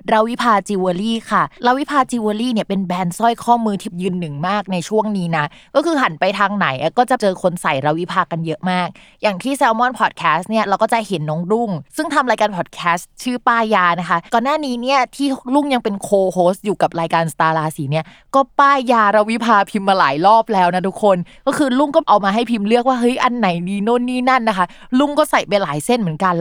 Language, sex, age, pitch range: Thai, female, 20-39, 185-235 Hz